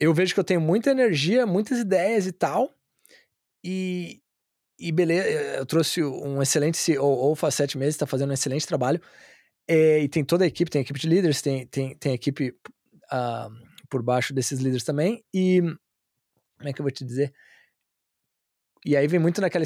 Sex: male